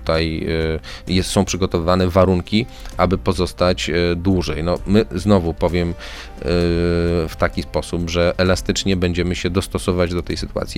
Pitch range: 80-95 Hz